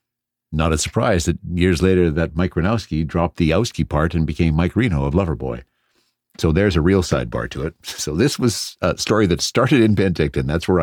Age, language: 60-79, English